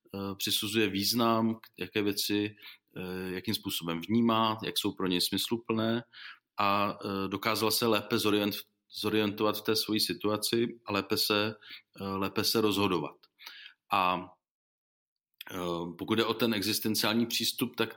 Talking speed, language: 115 wpm, Czech